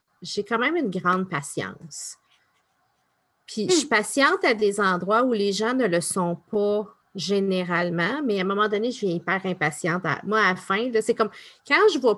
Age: 30-49